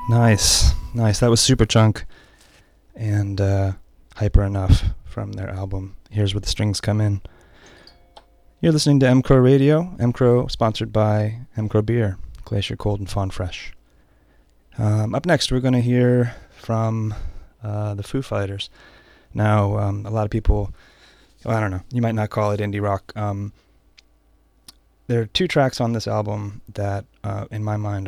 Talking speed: 170 wpm